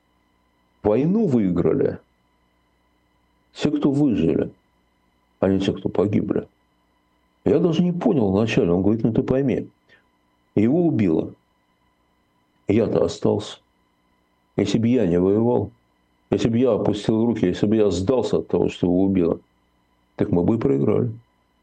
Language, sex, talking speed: Russian, male, 135 wpm